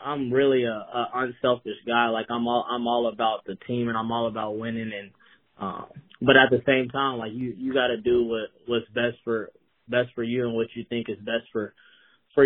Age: 20-39